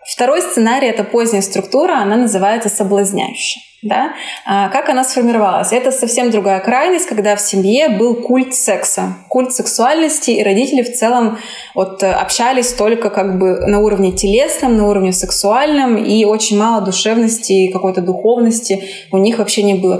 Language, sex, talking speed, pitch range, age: Russian, female, 145 wpm, 195-235 Hz, 20-39